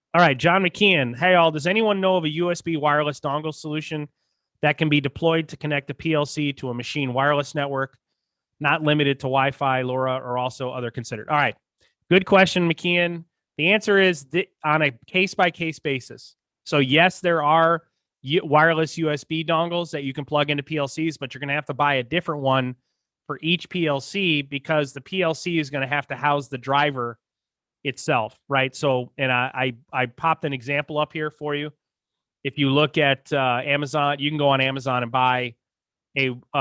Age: 30-49